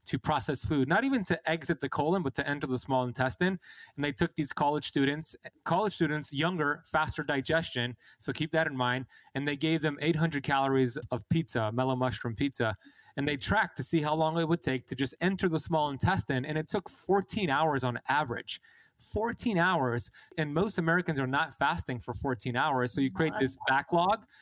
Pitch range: 130-160 Hz